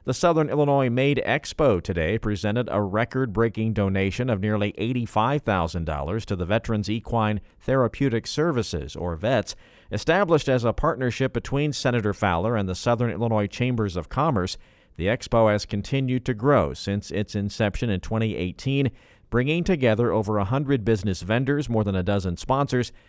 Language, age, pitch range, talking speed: English, 50-69, 95-120 Hz, 150 wpm